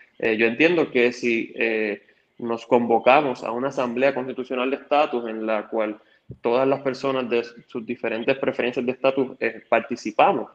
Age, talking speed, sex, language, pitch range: 20-39, 155 wpm, male, Spanish, 115-145 Hz